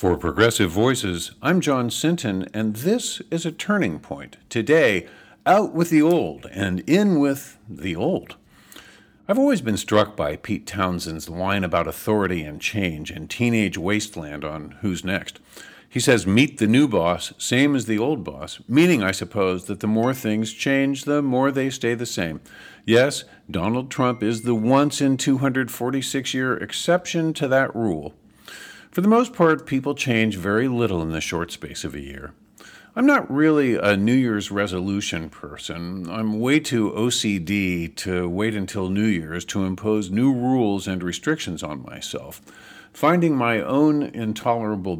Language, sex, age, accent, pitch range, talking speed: English, male, 50-69, American, 90-135 Hz, 160 wpm